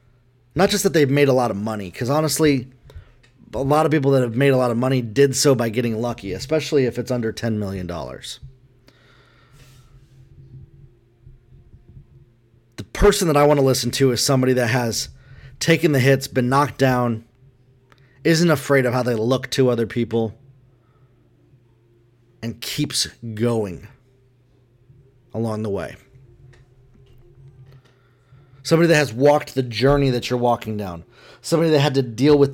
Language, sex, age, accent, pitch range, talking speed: English, male, 30-49, American, 120-140 Hz, 150 wpm